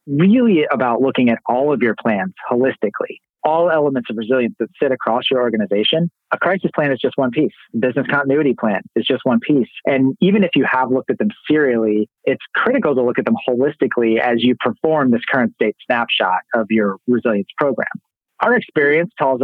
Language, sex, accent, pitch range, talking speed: English, male, American, 120-150 Hz, 195 wpm